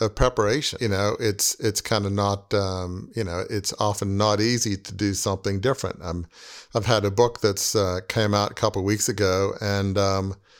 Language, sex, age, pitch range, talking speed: English, male, 50-69, 100-115 Hz, 205 wpm